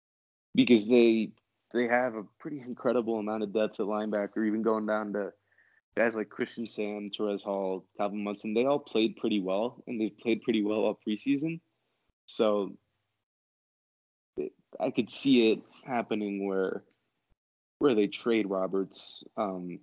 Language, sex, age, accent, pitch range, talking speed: English, male, 20-39, American, 100-115 Hz, 145 wpm